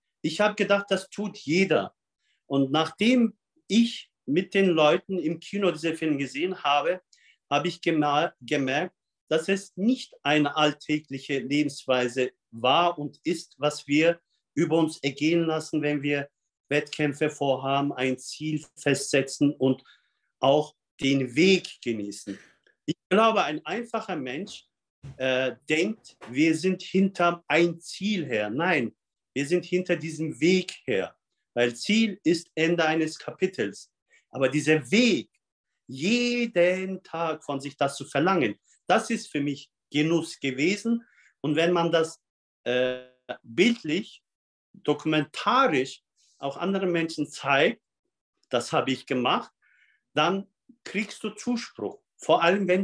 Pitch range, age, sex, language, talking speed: 145-185 Hz, 50-69, male, German, 125 wpm